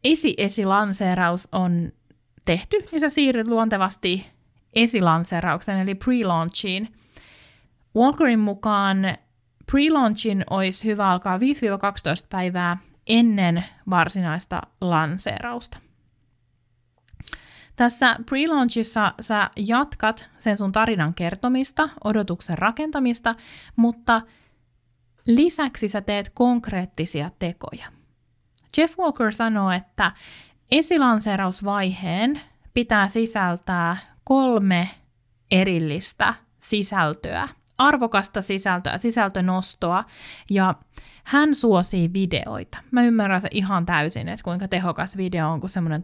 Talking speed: 85 wpm